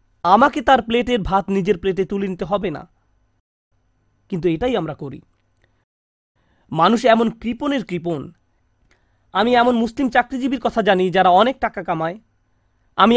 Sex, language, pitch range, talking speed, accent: male, Bengali, 165-235 Hz, 130 wpm, native